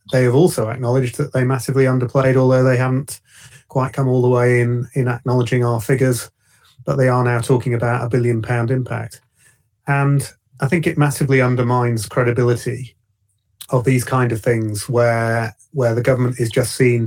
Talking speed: 175 wpm